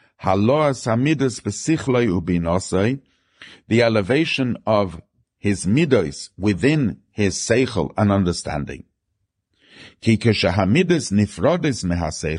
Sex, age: male, 50-69